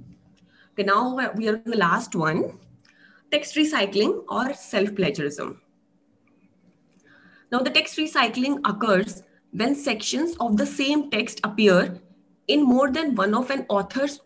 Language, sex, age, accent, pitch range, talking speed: English, female, 20-39, Indian, 195-275 Hz, 125 wpm